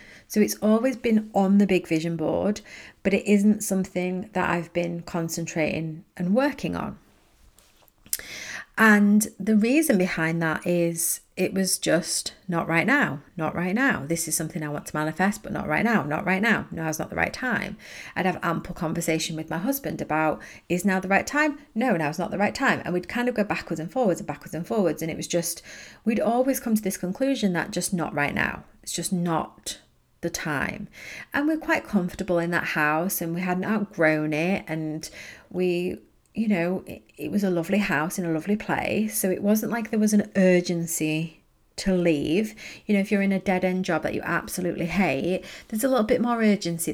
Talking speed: 205 wpm